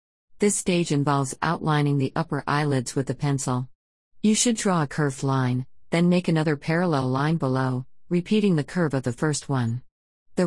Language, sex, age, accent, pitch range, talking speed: English, female, 50-69, American, 135-170 Hz, 170 wpm